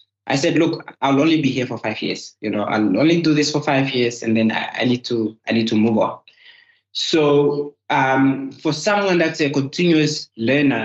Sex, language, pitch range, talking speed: male, English, 115-145 Hz, 210 wpm